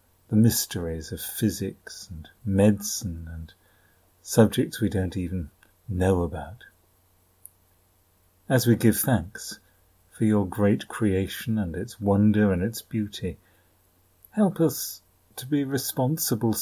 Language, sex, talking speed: English, male, 115 wpm